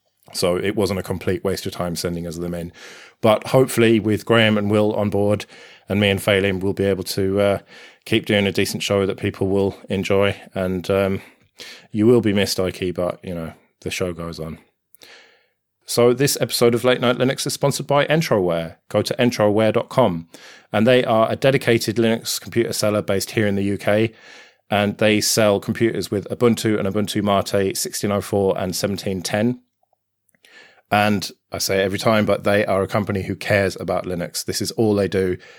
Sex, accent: male, British